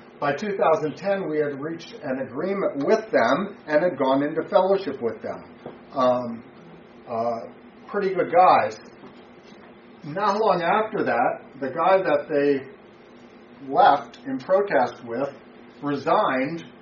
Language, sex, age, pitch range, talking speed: English, male, 40-59, 125-155 Hz, 120 wpm